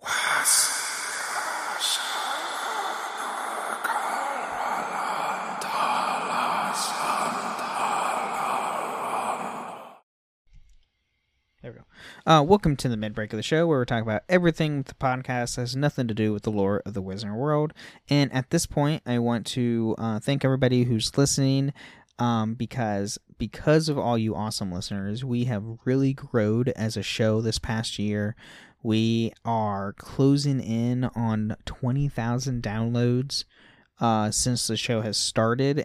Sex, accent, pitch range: male, American, 110-140 Hz